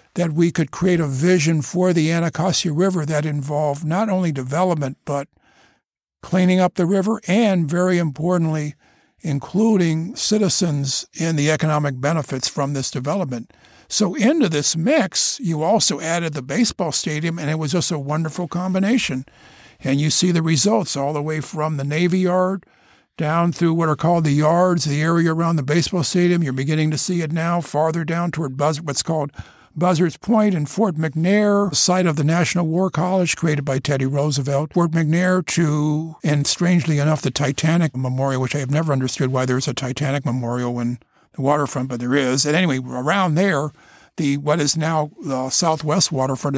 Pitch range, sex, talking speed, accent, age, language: 145-180 Hz, male, 180 wpm, American, 60-79, English